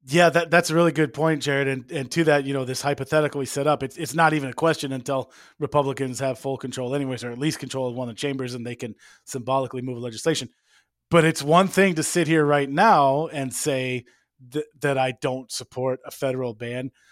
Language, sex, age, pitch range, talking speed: English, male, 30-49, 130-150 Hz, 225 wpm